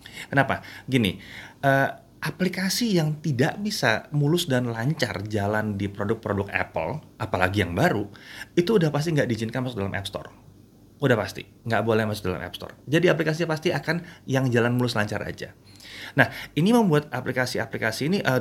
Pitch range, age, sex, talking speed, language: 105-150 Hz, 30-49, male, 160 wpm, Indonesian